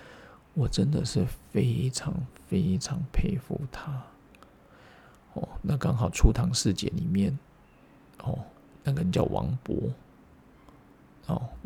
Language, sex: Chinese, male